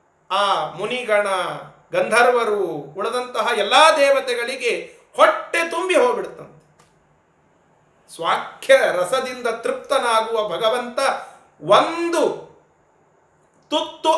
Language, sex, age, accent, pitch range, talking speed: Kannada, male, 40-59, native, 185-280 Hz, 65 wpm